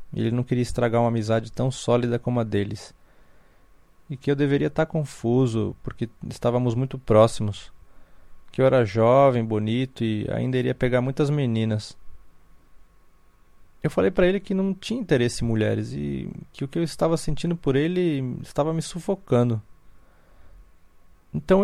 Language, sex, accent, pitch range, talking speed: Portuguese, male, Brazilian, 100-140 Hz, 155 wpm